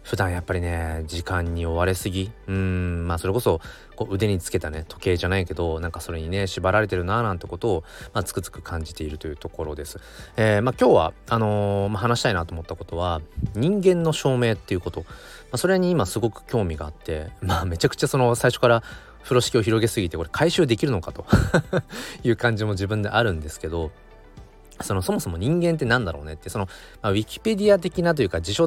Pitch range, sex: 85-120 Hz, male